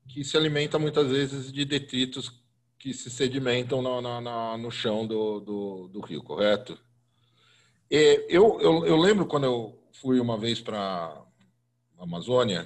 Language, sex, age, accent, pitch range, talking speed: Portuguese, male, 40-59, Brazilian, 115-140 Hz, 145 wpm